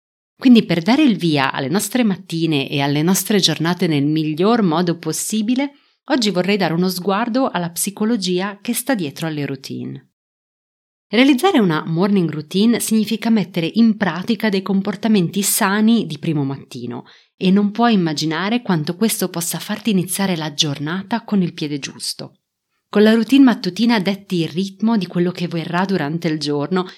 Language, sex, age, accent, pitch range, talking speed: Italian, female, 30-49, native, 165-225 Hz, 160 wpm